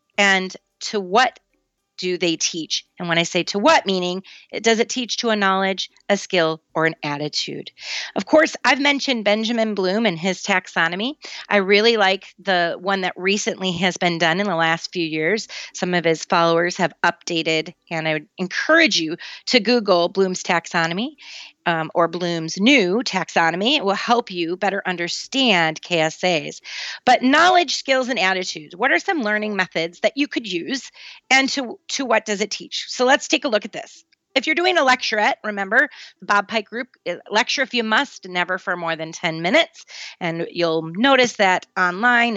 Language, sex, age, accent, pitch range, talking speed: English, female, 30-49, American, 175-255 Hz, 180 wpm